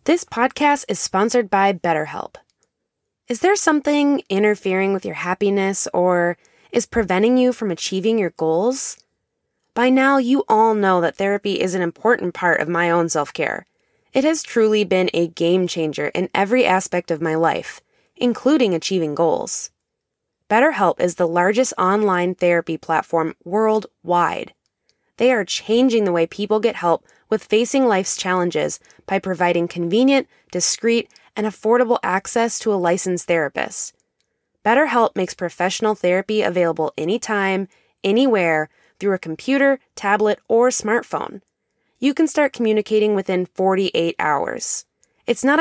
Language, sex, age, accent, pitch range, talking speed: English, female, 20-39, American, 175-235 Hz, 140 wpm